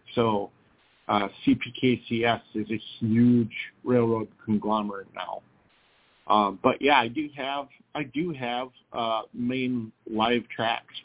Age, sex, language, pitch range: 50-69, male, English, 110-135 Hz